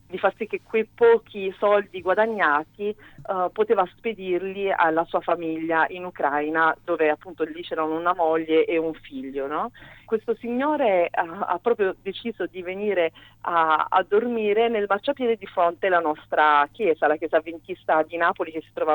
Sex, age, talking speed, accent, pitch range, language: female, 40-59, 165 wpm, native, 155-190 Hz, Italian